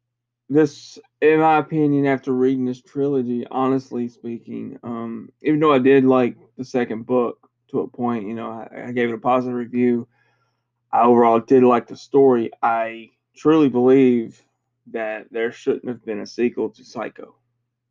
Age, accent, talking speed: 20-39, American, 165 wpm